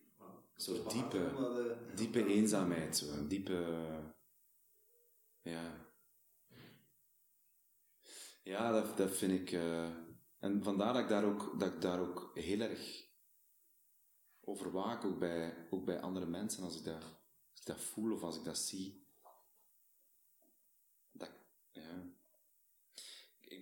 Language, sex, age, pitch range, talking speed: Dutch, male, 30-49, 85-100 Hz, 120 wpm